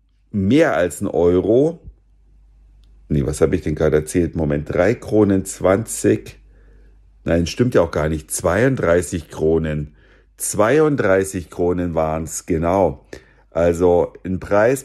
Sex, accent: male, German